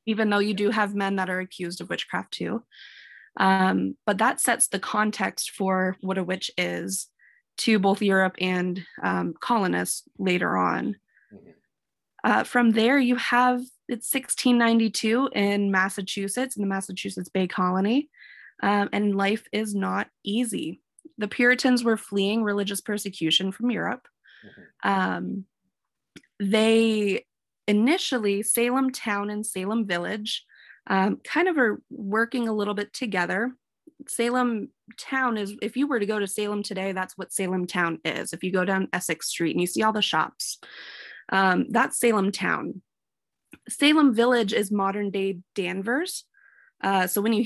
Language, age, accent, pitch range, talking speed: English, 20-39, American, 190-235 Hz, 150 wpm